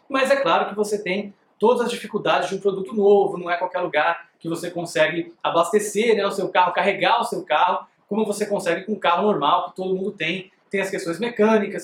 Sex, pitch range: male, 180-225 Hz